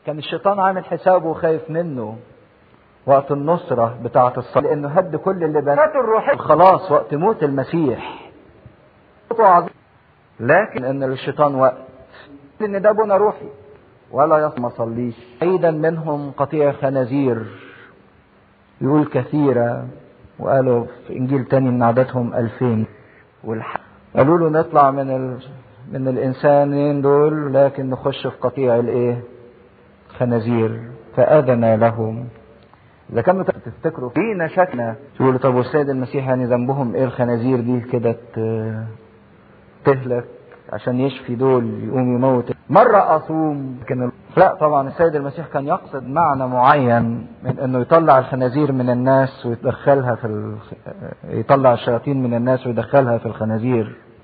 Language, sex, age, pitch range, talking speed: English, male, 50-69, 120-145 Hz, 120 wpm